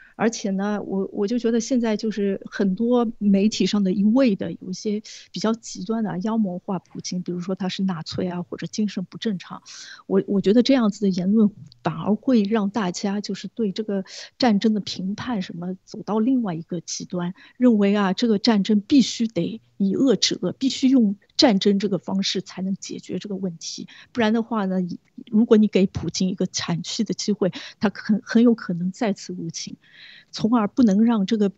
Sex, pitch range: female, 190-230 Hz